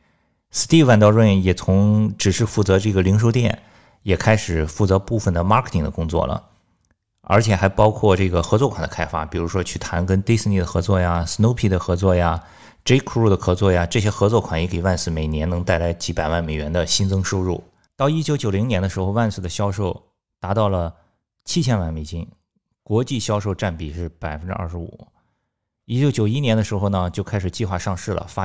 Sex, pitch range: male, 85-110 Hz